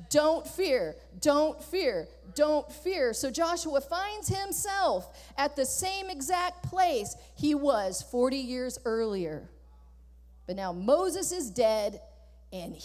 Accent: American